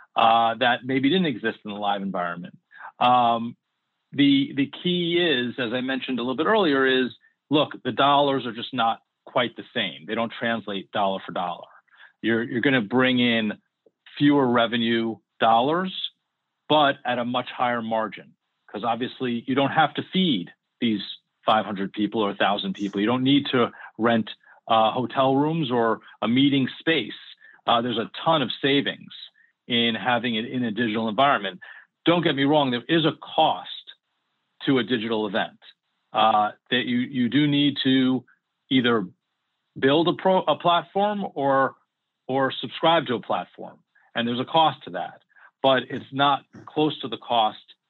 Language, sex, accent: English, male, American